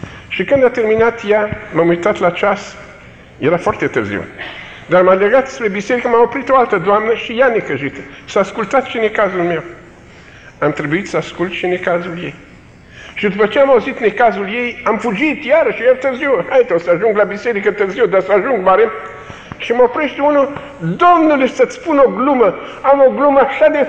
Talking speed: 195 wpm